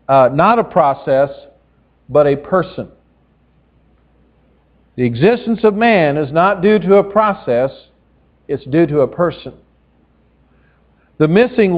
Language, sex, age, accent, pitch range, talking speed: English, male, 50-69, American, 150-200 Hz, 120 wpm